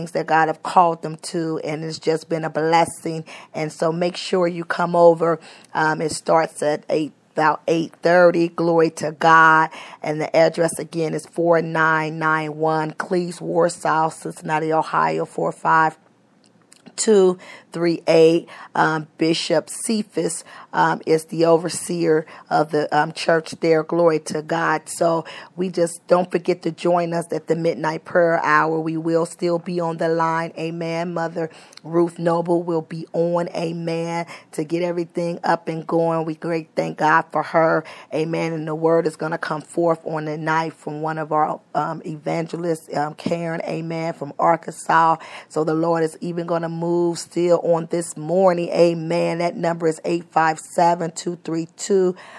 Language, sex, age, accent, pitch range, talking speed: English, female, 40-59, American, 160-170 Hz, 165 wpm